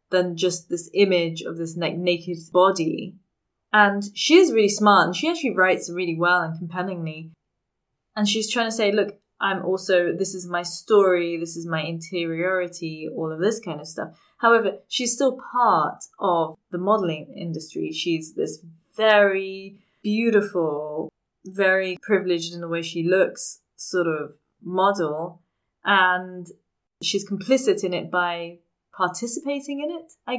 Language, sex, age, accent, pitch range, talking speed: English, female, 20-39, British, 175-210 Hz, 150 wpm